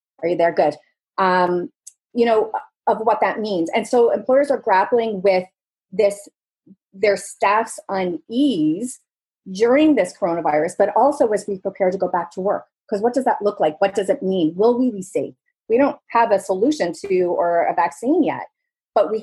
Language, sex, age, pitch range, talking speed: English, female, 30-49, 185-260 Hz, 185 wpm